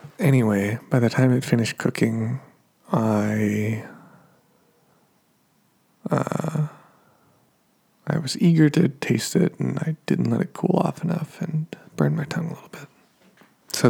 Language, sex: English, male